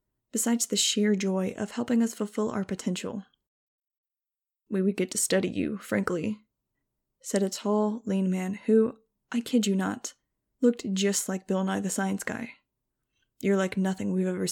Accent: American